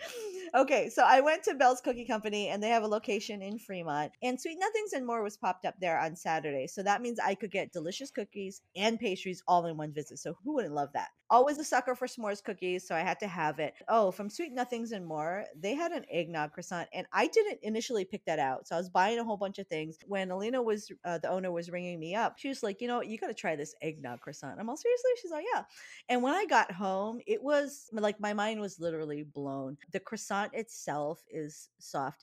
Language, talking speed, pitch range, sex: English, 240 wpm, 150-220 Hz, female